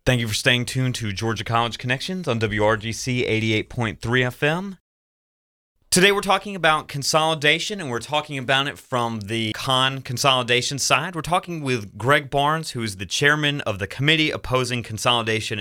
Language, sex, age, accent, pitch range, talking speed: English, male, 30-49, American, 110-135 Hz, 160 wpm